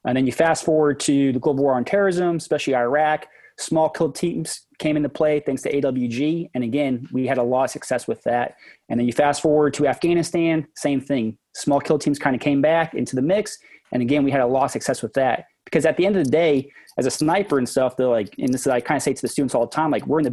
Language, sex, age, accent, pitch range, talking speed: English, male, 30-49, American, 125-155 Hz, 275 wpm